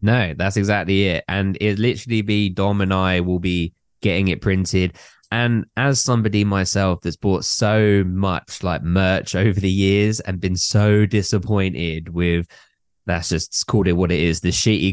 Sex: male